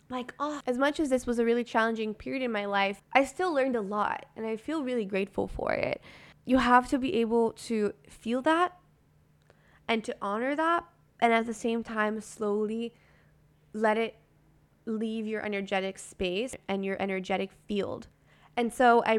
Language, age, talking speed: English, 10-29, 175 wpm